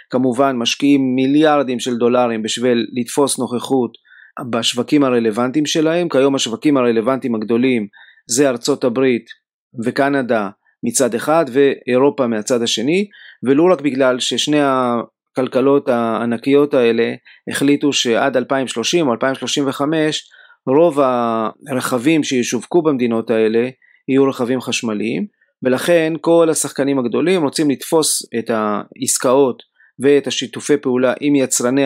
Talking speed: 105 wpm